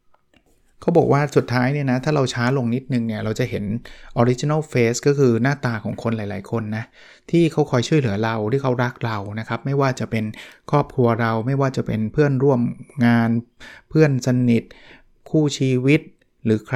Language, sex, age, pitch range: Thai, male, 20-39, 115-140 Hz